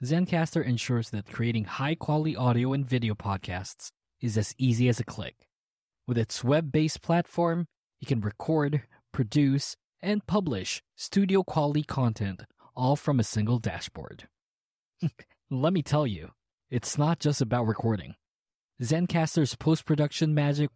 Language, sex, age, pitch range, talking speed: English, male, 20-39, 115-155 Hz, 125 wpm